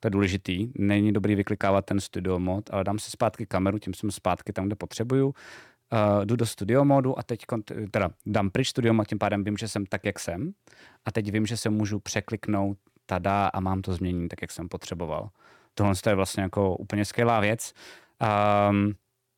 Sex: male